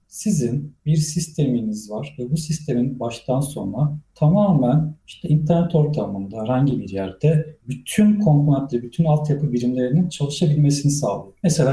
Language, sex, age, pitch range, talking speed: Turkish, male, 40-59, 125-155 Hz, 125 wpm